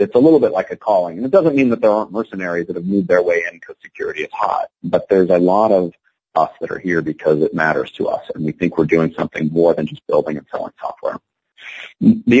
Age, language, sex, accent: 40-59, English, male, American